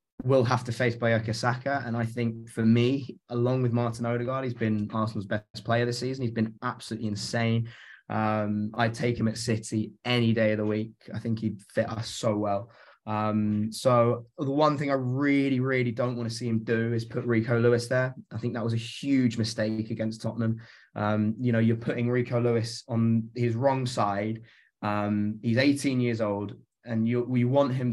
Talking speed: 200 wpm